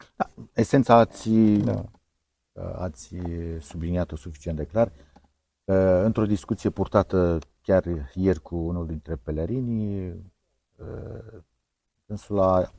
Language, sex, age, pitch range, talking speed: Romanian, male, 50-69, 85-110 Hz, 85 wpm